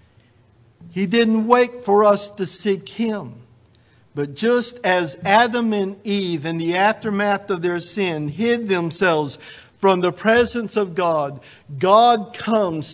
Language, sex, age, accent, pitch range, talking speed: English, male, 50-69, American, 150-220 Hz, 135 wpm